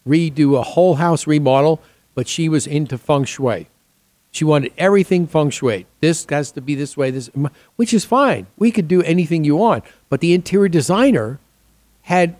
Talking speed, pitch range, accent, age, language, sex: 180 wpm, 130-165 Hz, American, 50-69, English, male